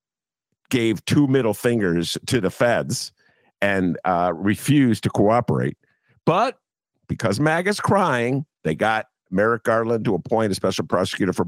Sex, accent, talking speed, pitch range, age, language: male, American, 135 wpm, 100-170 Hz, 50-69, English